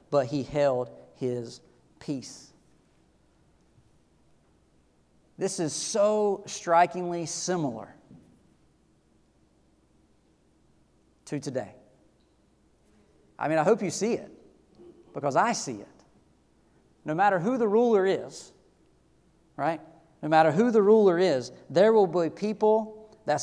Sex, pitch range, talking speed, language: male, 150-210 Hz, 105 wpm, English